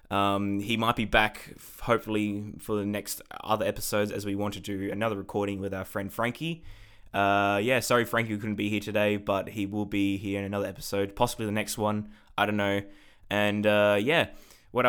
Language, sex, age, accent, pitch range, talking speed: English, male, 20-39, Australian, 100-110 Hz, 200 wpm